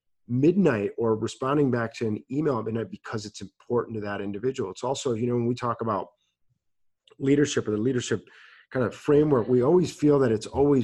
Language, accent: English, American